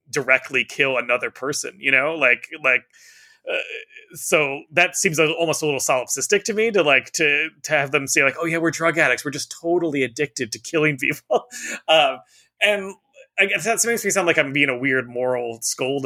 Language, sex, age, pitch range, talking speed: English, male, 30-49, 130-170 Hz, 200 wpm